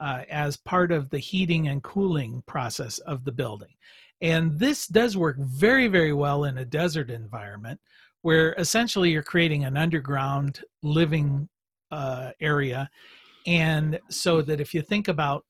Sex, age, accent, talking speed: male, 50-69, American, 150 wpm